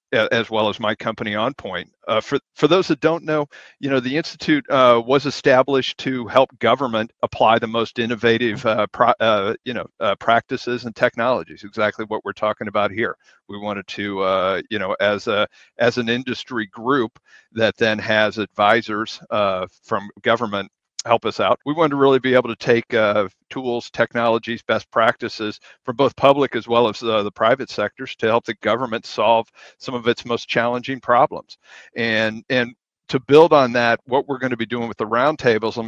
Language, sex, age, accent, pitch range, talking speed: English, male, 50-69, American, 110-125 Hz, 190 wpm